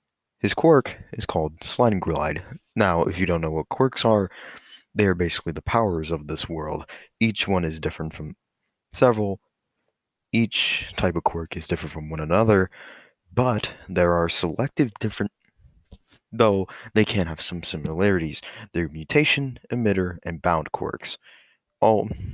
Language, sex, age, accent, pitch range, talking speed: English, male, 30-49, American, 80-105 Hz, 145 wpm